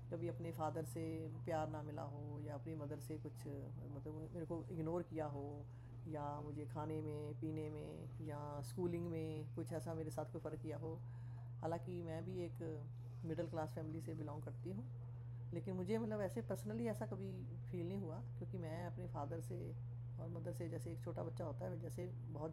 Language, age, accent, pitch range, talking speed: Hindi, 20-39, native, 120-165 Hz, 195 wpm